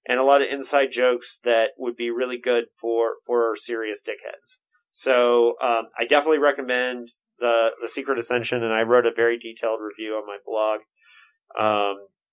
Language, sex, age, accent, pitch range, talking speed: English, male, 30-49, American, 115-140 Hz, 170 wpm